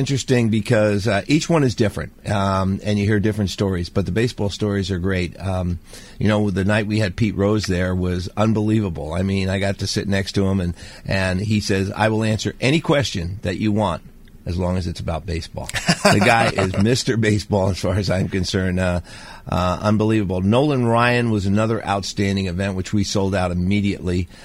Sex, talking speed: male, 200 wpm